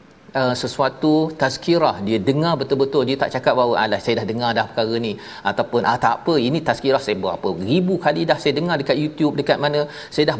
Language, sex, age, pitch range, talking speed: Malayalam, male, 40-59, 130-165 Hz, 215 wpm